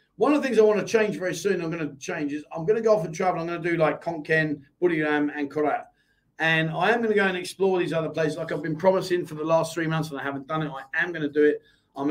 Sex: male